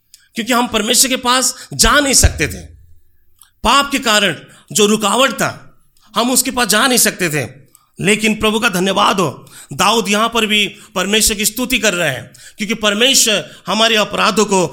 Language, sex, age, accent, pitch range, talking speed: Hindi, male, 40-59, native, 135-215 Hz, 170 wpm